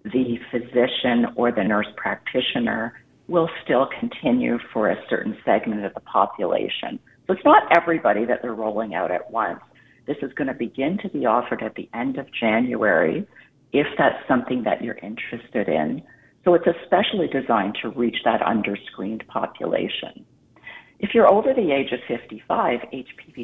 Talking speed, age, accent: 160 wpm, 50-69, American